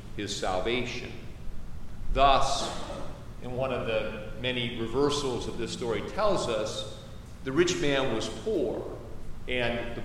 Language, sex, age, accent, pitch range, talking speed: English, male, 40-59, American, 110-145 Hz, 125 wpm